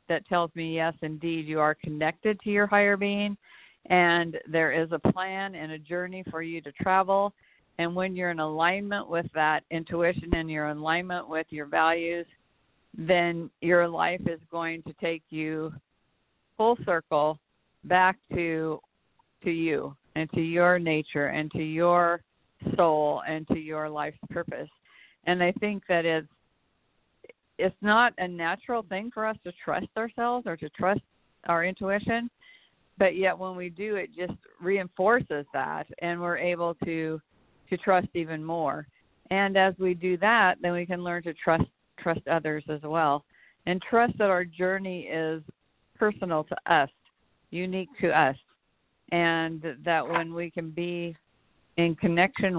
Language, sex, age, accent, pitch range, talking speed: English, female, 50-69, American, 160-185 Hz, 155 wpm